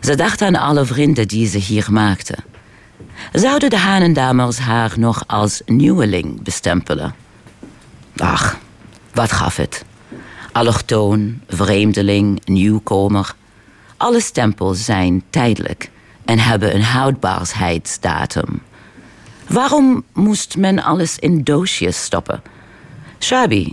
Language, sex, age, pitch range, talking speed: Dutch, female, 50-69, 100-135 Hz, 100 wpm